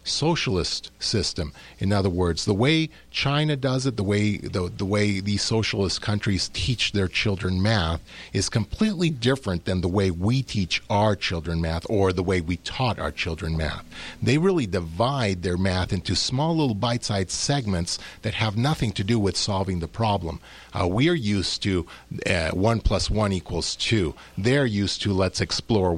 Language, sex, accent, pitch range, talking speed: English, male, American, 90-115 Hz, 175 wpm